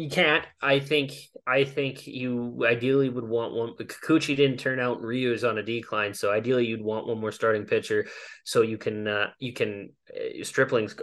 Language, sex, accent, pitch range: English, male, American, 120-155 Hz